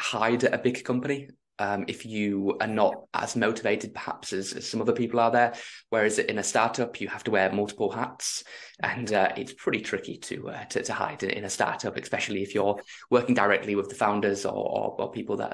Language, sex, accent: English, male, British